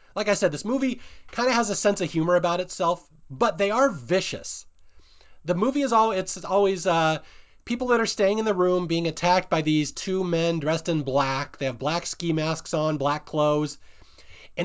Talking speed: 200 wpm